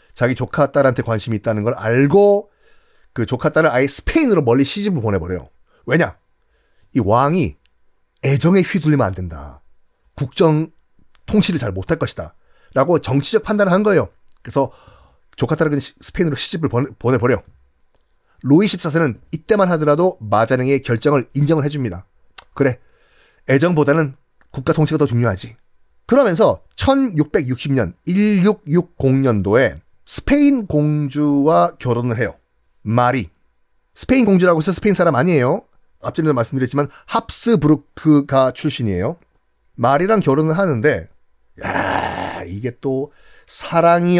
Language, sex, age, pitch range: Korean, male, 30-49, 115-170 Hz